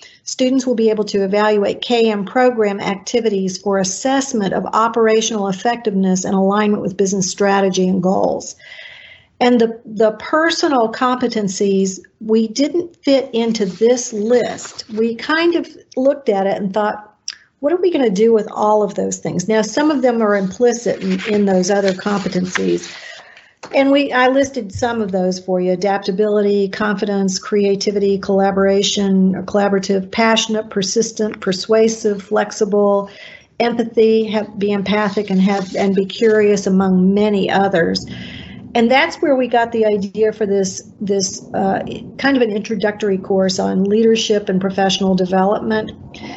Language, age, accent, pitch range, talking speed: English, 50-69, American, 195-225 Hz, 145 wpm